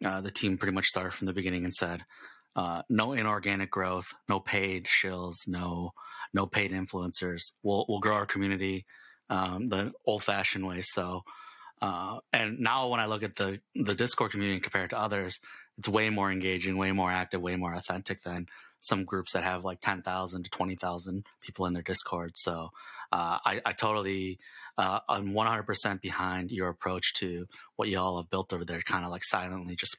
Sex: male